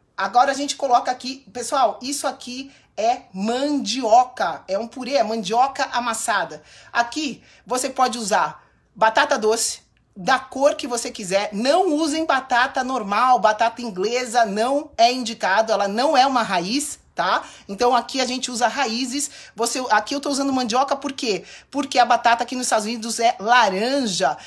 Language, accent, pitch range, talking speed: Portuguese, Brazilian, 210-270 Hz, 160 wpm